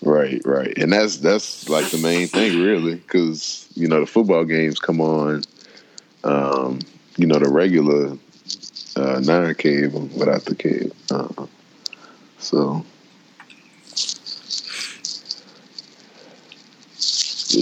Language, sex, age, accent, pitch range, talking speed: English, male, 20-39, American, 70-85 Hz, 100 wpm